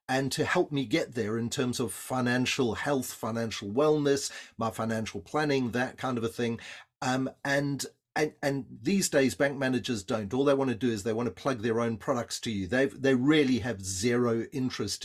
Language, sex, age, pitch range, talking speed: English, male, 40-59, 115-150 Hz, 205 wpm